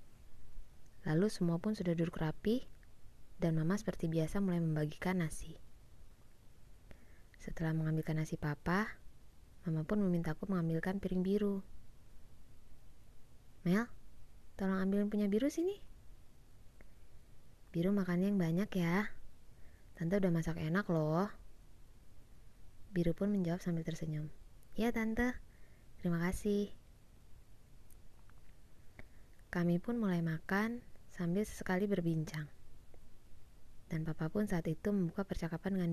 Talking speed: 105 wpm